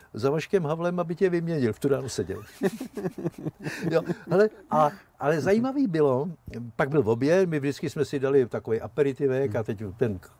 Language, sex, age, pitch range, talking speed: Czech, male, 60-79, 115-150 Hz, 175 wpm